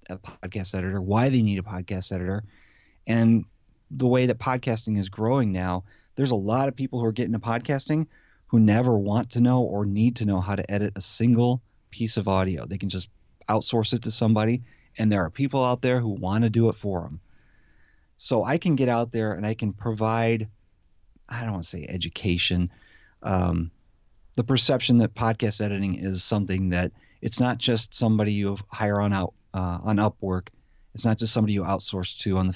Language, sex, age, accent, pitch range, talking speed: English, male, 30-49, American, 95-115 Hz, 200 wpm